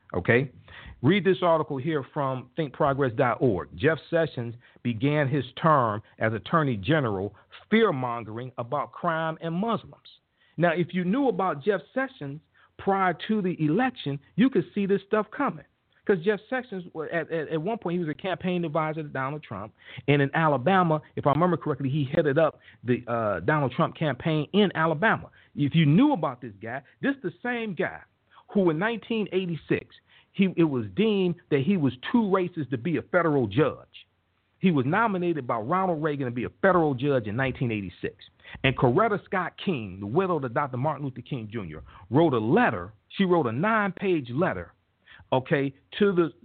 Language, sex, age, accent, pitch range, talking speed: English, male, 40-59, American, 130-185 Hz, 175 wpm